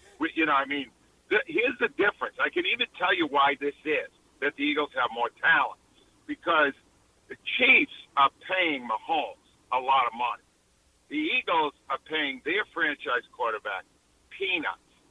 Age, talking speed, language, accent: 50-69, 155 wpm, English, American